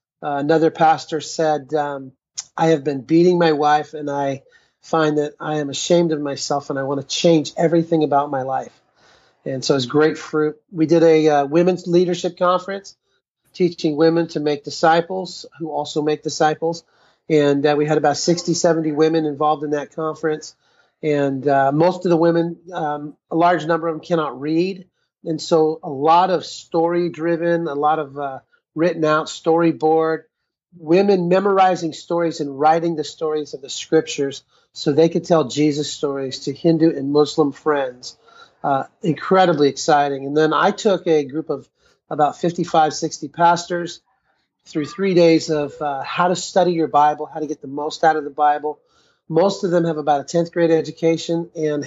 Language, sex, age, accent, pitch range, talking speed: English, male, 30-49, American, 150-170 Hz, 180 wpm